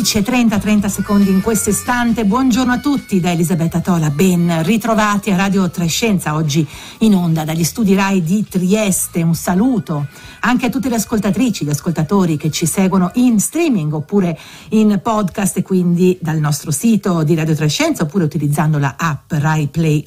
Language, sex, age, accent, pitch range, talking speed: Italian, female, 50-69, native, 160-210 Hz, 170 wpm